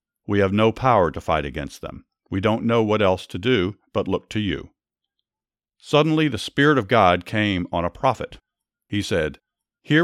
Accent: American